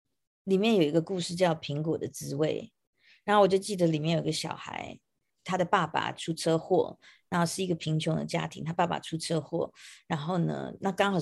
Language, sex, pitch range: Chinese, female, 155-190 Hz